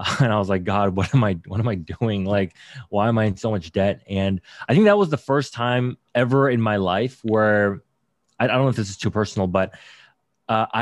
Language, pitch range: English, 100-130 Hz